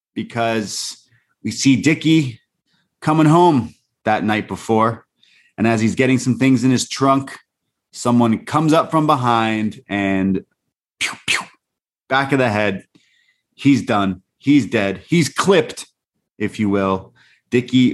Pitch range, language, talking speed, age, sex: 100-125 Hz, English, 125 wpm, 30-49, male